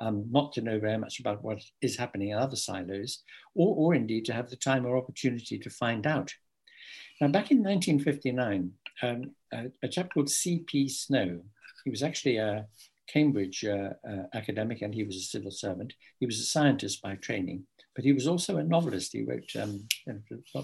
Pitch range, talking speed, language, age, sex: 105-140 Hz, 190 wpm, English, 60-79, male